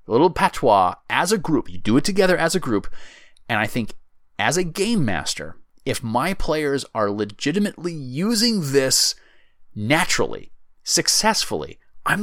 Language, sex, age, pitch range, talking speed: English, male, 30-49, 115-175 Hz, 140 wpm